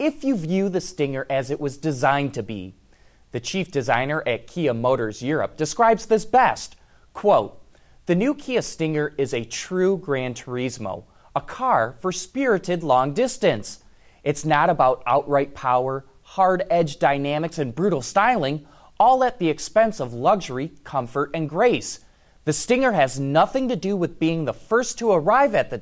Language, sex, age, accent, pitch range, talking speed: English, male, 30-49, American, 130-200 Hz, 165 wpm